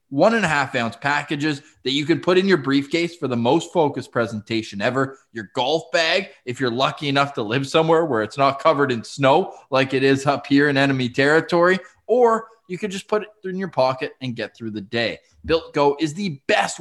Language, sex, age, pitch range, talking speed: English, male, 20-39, 125-180 Hz, 205 wpm